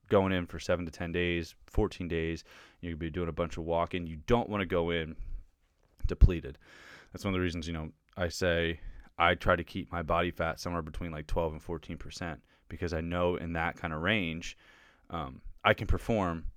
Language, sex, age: English, male, 20-39